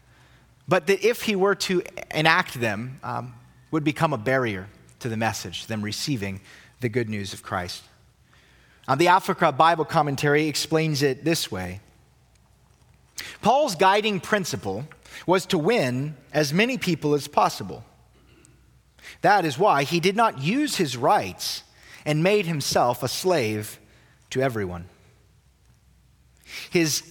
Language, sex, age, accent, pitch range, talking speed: English, male, 30-49, American, 115-175 Hz, 135 wpm